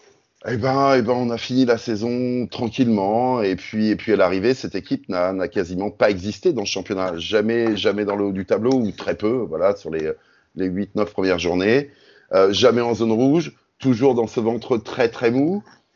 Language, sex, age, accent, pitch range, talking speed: French, male, 30-49, French, 100-130 Hz, 220 wpm